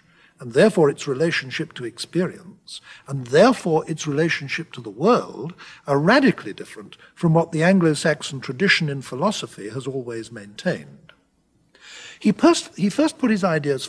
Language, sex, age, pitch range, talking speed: English, male, 60-79, 145-190 Hz, 140 wpm